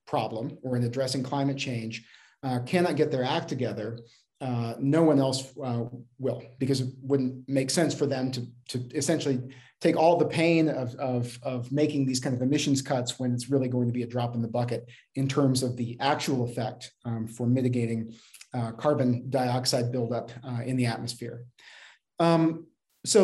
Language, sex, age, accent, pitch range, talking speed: English, male, 40-59, American, 125-150 Hz, 180 wpm